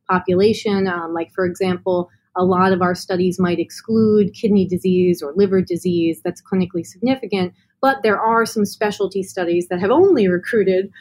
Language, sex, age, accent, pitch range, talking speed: Danish, female, 30-49, American, 175-215 Hz, 165 wpm